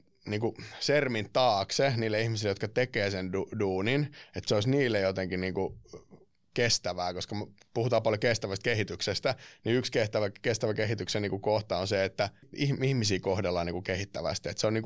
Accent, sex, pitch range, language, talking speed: native, male, 95-115 Hz, Finnish, 160 wpm